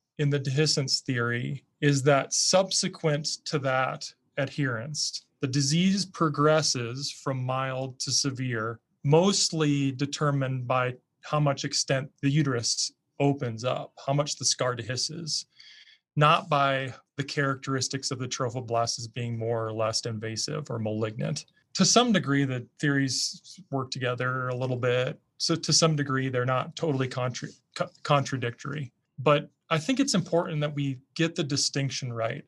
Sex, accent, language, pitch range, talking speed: male, American, English, 130-155 Hz, 140 wpm